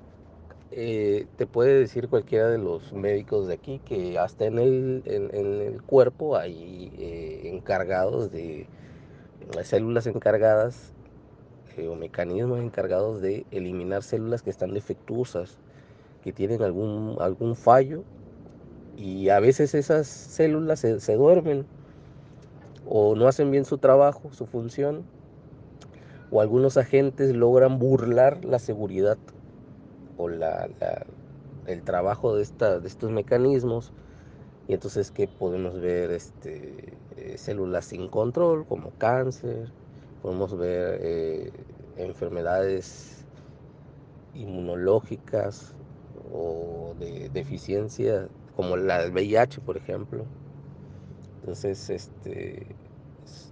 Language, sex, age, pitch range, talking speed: English, male, 30-49, 100-140 Hz, 110 wpm